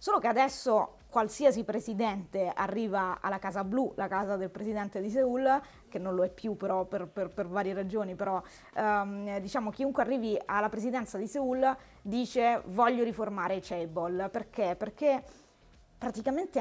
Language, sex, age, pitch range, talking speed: Italian, female, 20-39, 195-245 Hz, 155 wpm